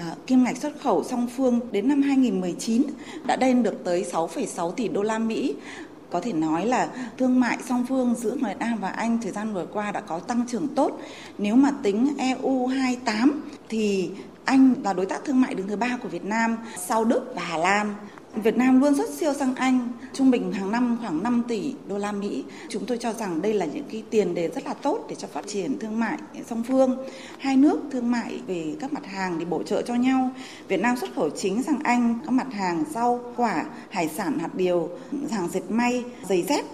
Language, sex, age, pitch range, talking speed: Vietnamese, female, 20-39, 205-260 Hz, 220 wpm